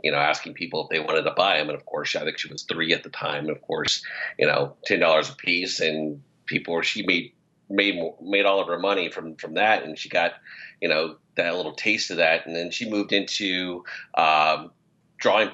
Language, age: English, 40-59